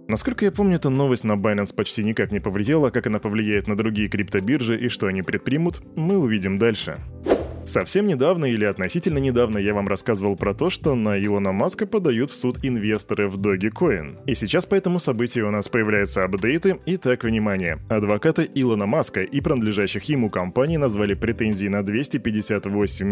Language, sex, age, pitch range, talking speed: Russian, male, 20-39, 105-145 Hz, 170 wpm